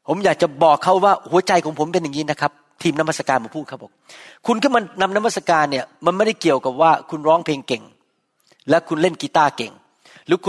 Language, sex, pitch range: Thai, male, 170-240 Hz